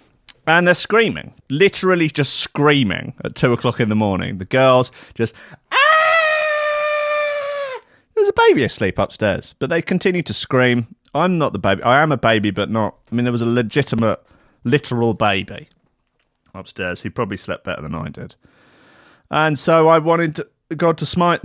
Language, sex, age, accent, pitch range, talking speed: English, male, 30-49, British, 95-140 Hz, 170 wpm